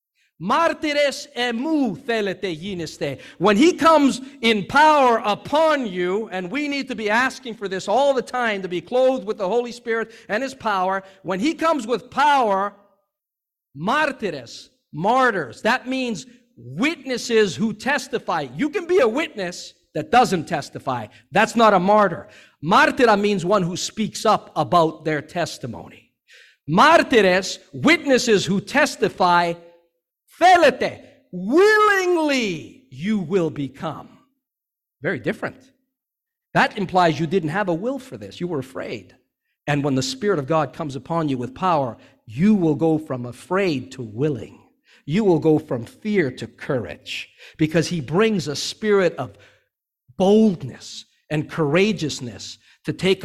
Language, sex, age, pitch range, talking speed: English, male, 50-69, 155-245 Hz, 135 wpm